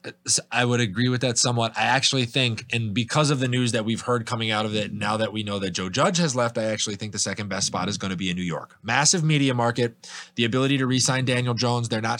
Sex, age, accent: male, 20-39, American